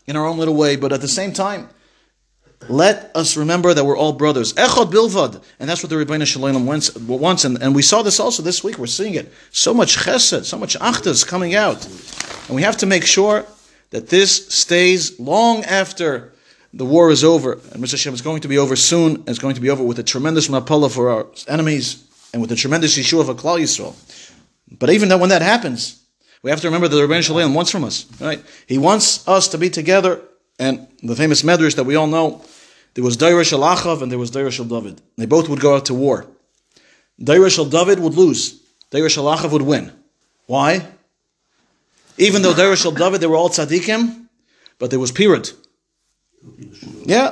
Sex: male